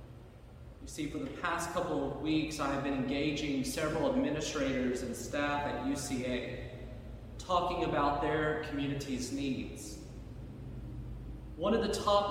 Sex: male